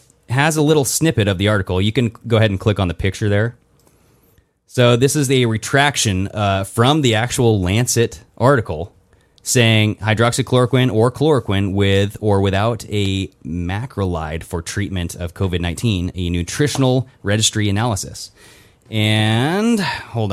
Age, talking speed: 20-39, 140 wpm